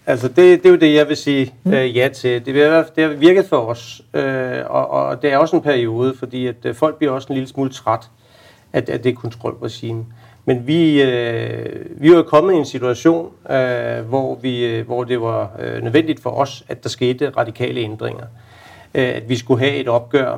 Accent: native